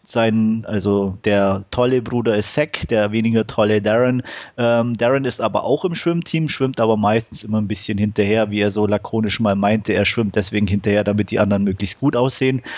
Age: 30-49